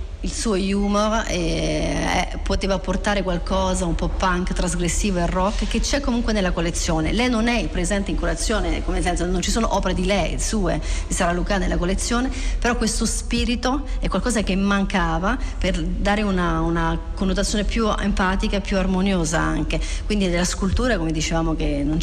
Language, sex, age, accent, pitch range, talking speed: Italian, female, 40-59, native, 165-200 Hz, 170 wpm